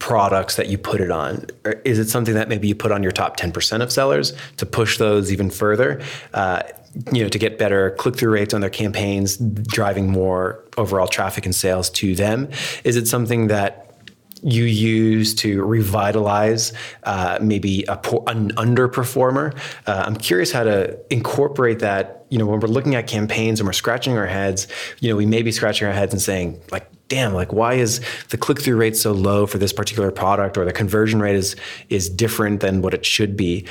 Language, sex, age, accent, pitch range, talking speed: English, male, 20-39, American, 100-115 Hz, 200 wpm